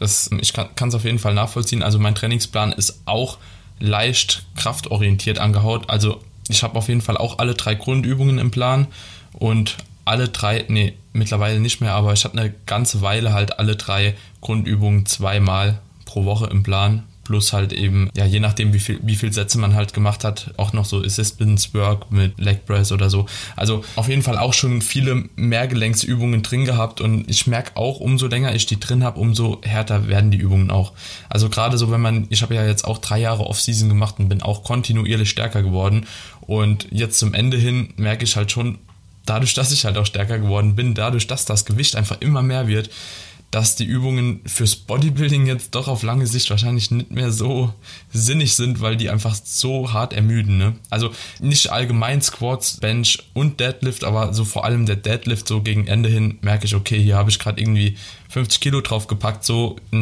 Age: 20-39